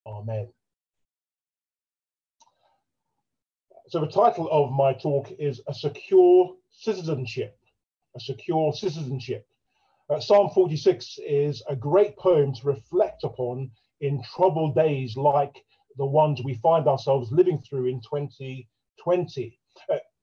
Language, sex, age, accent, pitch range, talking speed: English, male, 40-59, British, 135-180 Hz, 115 wpm